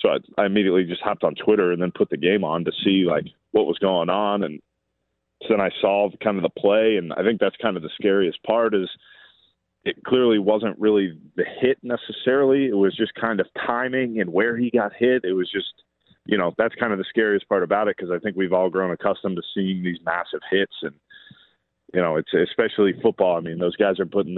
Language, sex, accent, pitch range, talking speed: English, male, American, 90-110 Hz, 235 wpm